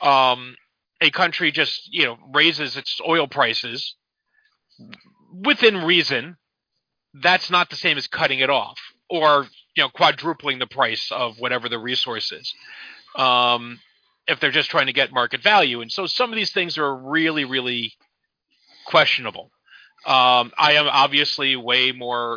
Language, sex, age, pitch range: English, male, 40-59, 125-180 Hz